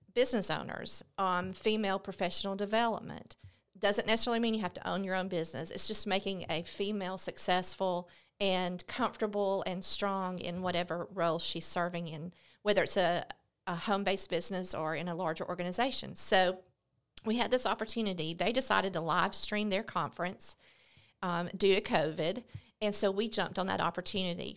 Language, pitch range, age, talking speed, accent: English, 175-210 Hz, 40-59, 165 wpm, American